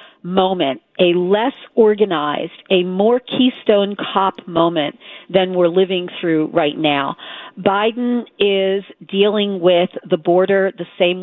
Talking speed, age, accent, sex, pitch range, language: 125 wpm, 40-59, American, female, 170-200 Hz, English